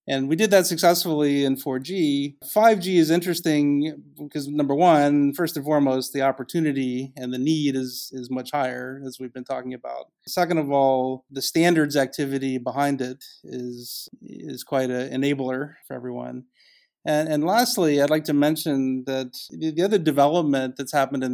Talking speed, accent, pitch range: 165 wpm, American, 130-150 Hz